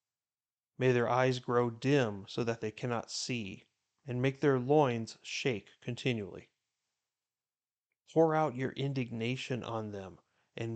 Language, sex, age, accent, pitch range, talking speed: English, male, 40-59, American, 115-130 Hz, 130 wpm